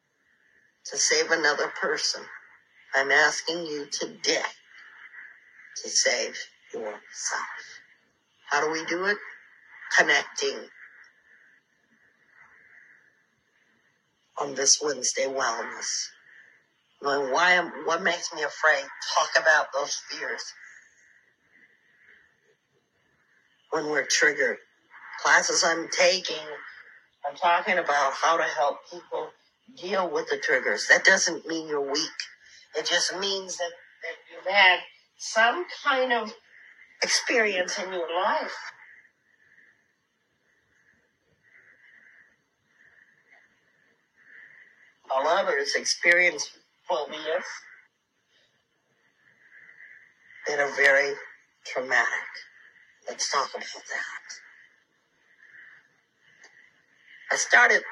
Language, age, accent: English, 50-69, American